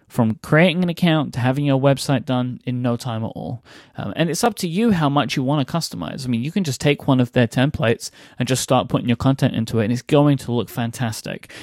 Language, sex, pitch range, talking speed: English, male, 120-145 Hz, 260 wpm